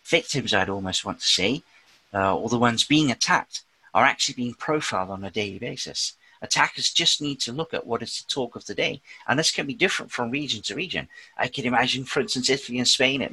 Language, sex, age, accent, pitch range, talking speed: English, male, 40-59, British, 110-135 Hz, 230 wpm